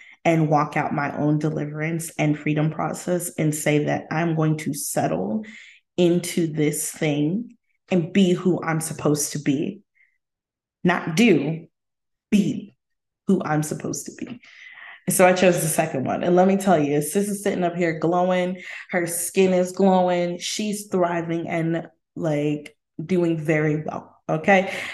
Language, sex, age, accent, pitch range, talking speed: English, female, 20-39, American, 160-195 Hz, 150 wpm